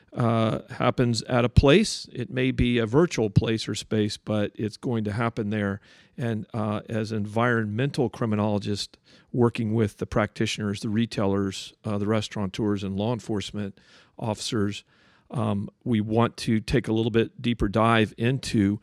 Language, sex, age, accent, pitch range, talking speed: English, male, 50-69, American, 105-120 Hz, 155 wpm